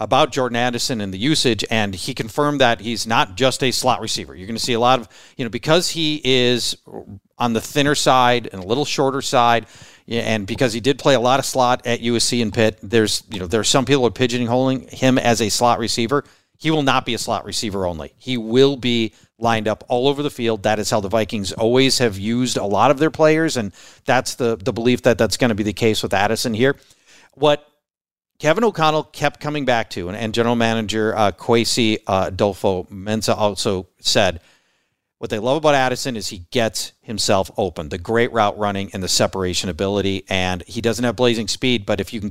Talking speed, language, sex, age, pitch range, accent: 220 wpm, English, male, 40-59, 105-130 Hz, American